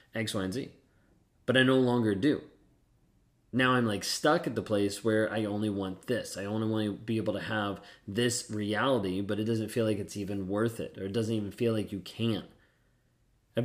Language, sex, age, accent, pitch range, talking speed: English, male, 20-39, American, 100-120 Hz, 215 wpm